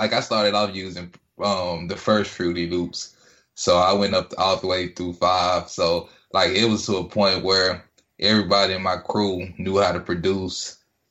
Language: English